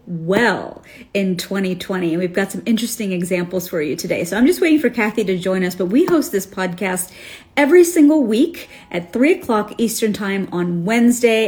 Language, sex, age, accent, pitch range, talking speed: English, female, 40-59, American, 185-240 Hz, 190 wpm